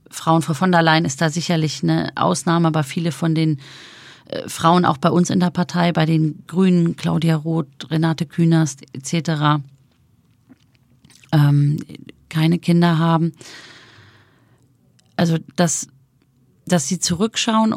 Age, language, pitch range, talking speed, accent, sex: 40-59, German, 140-165 Hz, 125 wpm, German, female